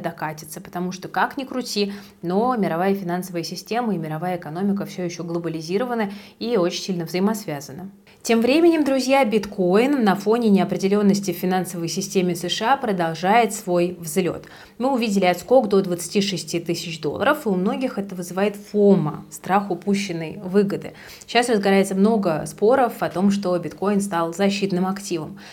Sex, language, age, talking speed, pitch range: female, Russian, 20-39, 145 wpm, 175-215 Hz